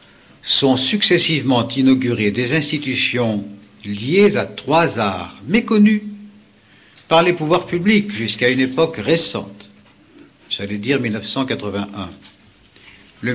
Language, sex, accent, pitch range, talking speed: French, male, French, 105-145 Hz, 100 wpm